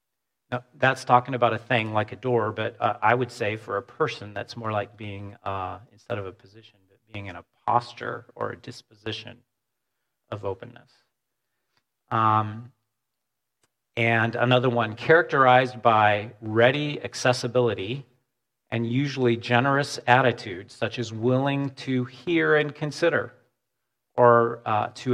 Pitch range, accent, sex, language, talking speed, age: 115-125 Hz, American, male, English, 140 wpm, 40-59